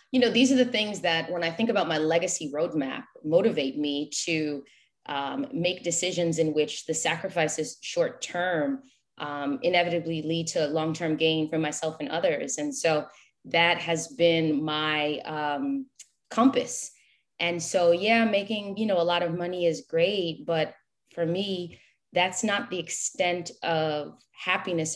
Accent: American